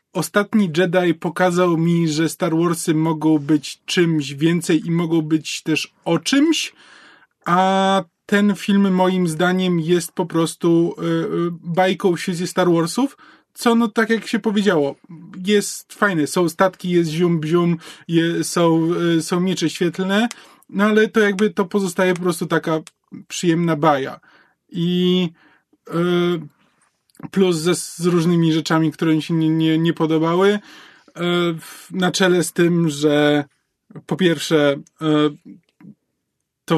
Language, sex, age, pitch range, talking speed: Polish, male, 20-39, 155-185 Hz, 125 wpm